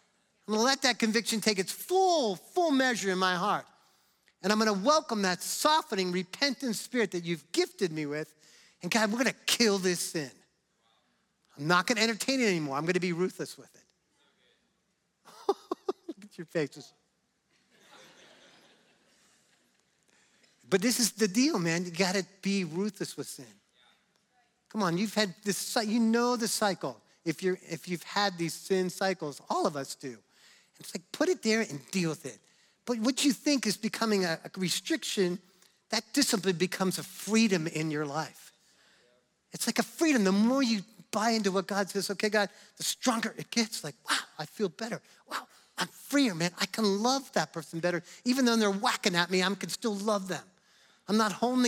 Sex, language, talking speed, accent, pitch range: male, English, 185 wpm, American, 180-235 Hz